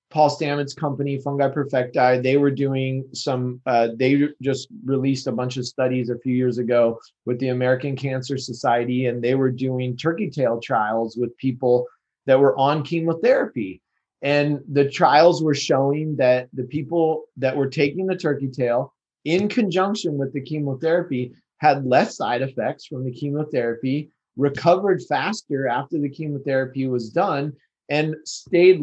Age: 30-49